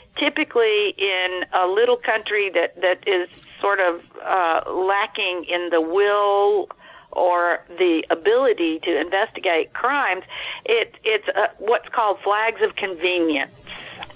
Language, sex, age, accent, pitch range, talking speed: English, female, 50-69, American, 165-255 Hz, 120 wpm